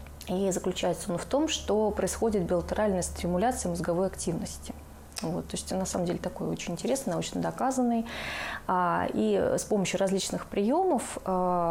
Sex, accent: female, native